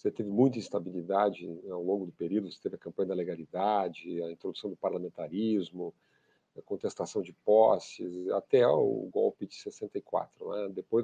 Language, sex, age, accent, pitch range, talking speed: Portuguese, male, 50-69, Brazilian, 100-135 Hz, 160 wpm